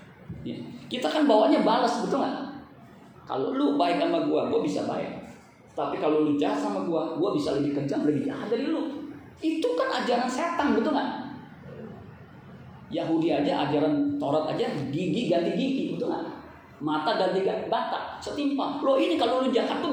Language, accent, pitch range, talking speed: Indonesian, native, 195-295 Hz, 165 wpm